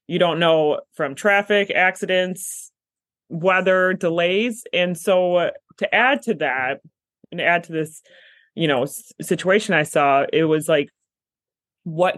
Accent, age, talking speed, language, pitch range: American, 20-39, 140 wpm, English, 150-195 Hz